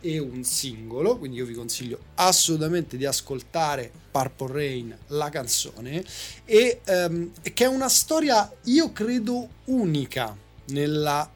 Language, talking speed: Italian, 125 wpm